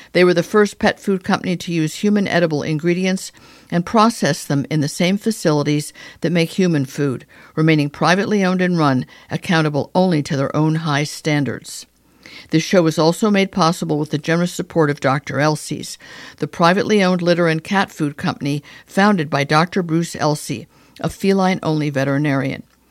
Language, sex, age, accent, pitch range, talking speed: English, female, 50-69, American, 150-185 Hz, 170 wpm